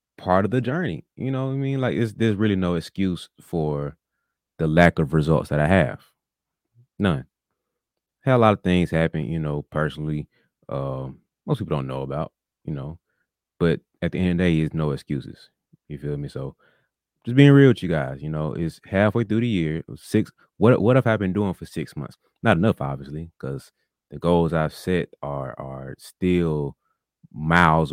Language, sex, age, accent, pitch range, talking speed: English, male, 30-49, American, 75-105 Hz, 195 wpm